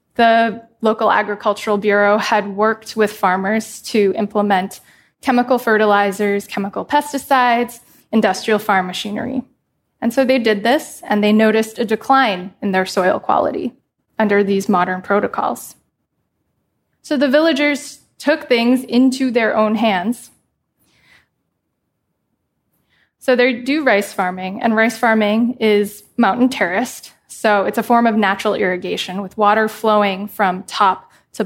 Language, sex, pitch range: English, female, 205-245 Hz